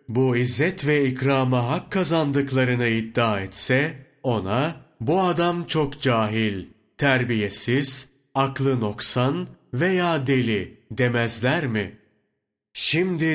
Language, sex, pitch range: Turkish, male, 115-140 Hz